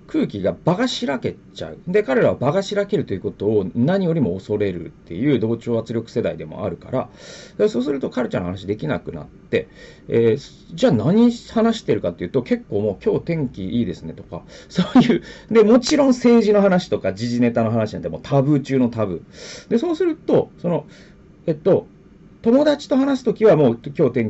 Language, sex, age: Japanese, male, 40-59